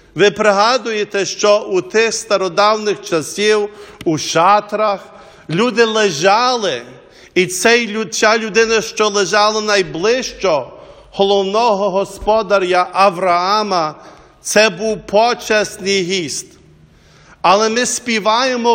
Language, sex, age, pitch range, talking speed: English, male, 50-69, 185-225 Hz, 85 wpm